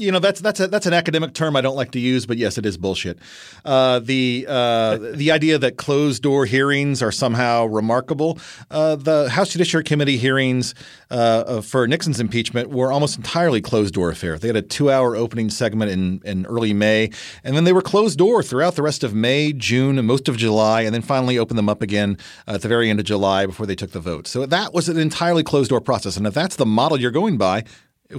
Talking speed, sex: 225 wpm, male